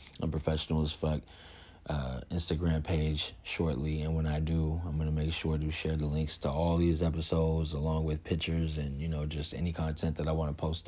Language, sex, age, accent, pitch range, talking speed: English, male, 30-49, American, 80-95 Hz, 215 wpm